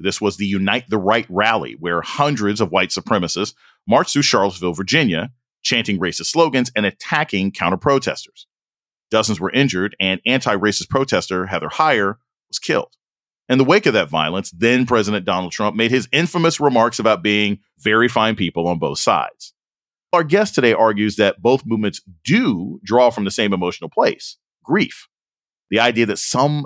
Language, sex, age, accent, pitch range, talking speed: English, male, 40-59, American, 100-130 Hz, 165 wpm